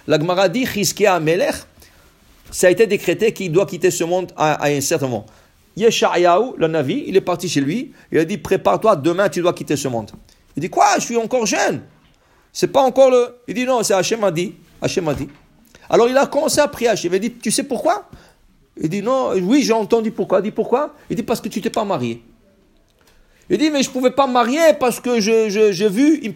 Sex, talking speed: male, 215 wpm